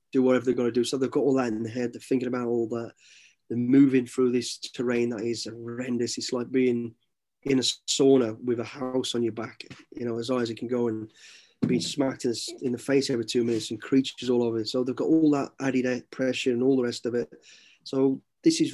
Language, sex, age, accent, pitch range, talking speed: English, male, 30-49, British, 120-140 Hz, 245 wpm